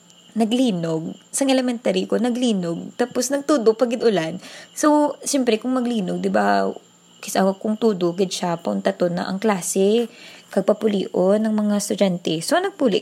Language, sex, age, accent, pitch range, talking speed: English, female, 20-39, Filipino, 195-265 Hz, 145 wpm